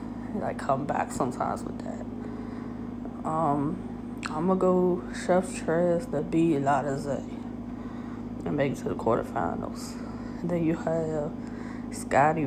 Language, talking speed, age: English, 125 wpm, 20-39